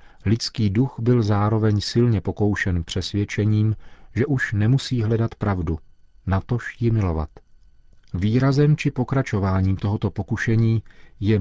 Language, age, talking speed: Czech, 40-59, 110 wpm